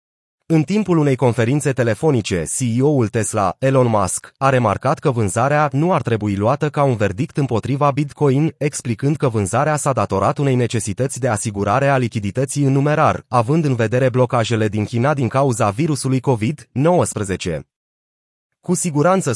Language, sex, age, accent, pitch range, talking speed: Romanian, male, 30-49, native, 115-150 Hz, 145 wpm